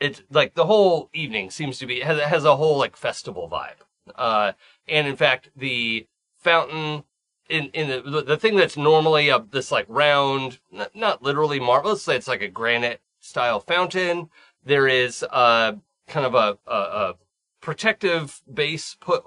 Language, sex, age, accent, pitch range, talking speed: English, male, 30-49, American, 125-180 Hz, 165 wpm